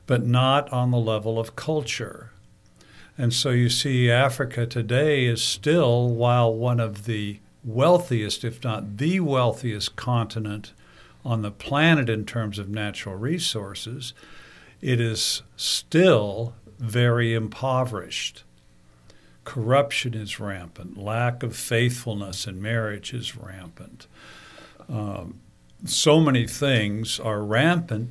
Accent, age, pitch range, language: American, 60-79, 100-120 Hz, English